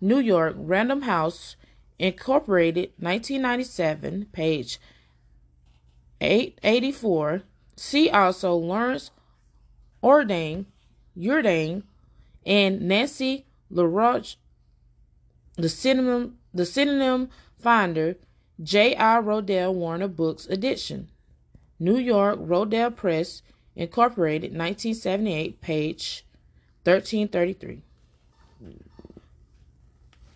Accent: American